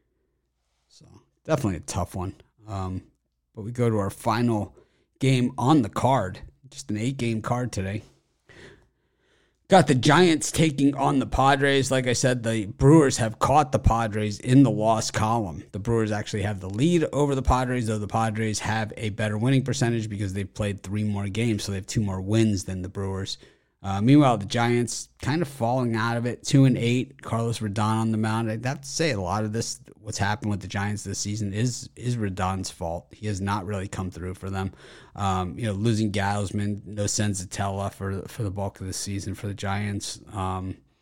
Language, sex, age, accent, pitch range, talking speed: English, male, 30-49, American, 100-125 Hz, 205 wpm